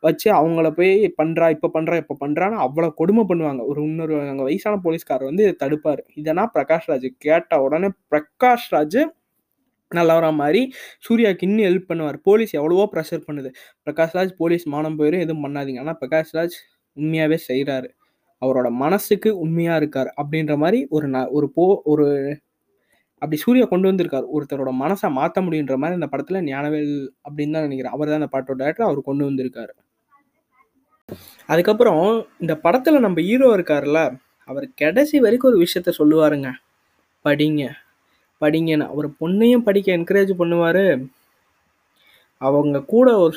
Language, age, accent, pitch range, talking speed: Tamil, 20-39, native, 145-190 Hz, 125 wpm